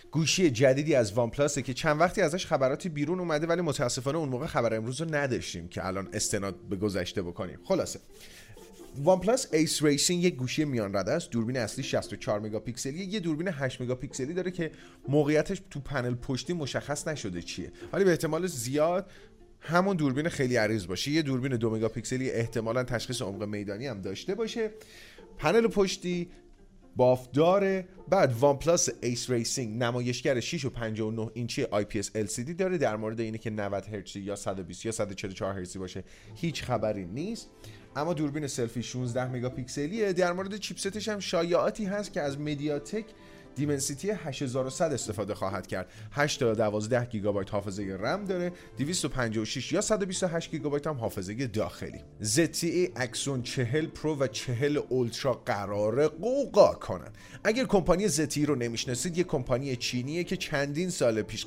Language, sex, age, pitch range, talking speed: Persian, male, 30-49, 115-165 Hz, 155 wpm